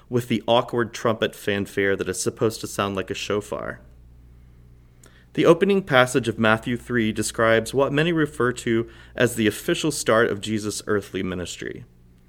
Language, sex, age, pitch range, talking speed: English, male, 30-49, 90-125 Hz, 155 wpm